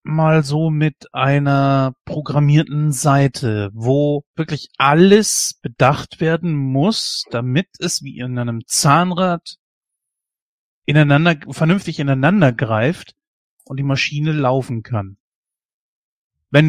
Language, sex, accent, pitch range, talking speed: German, male, German, 130-160 Hz, 95 wpm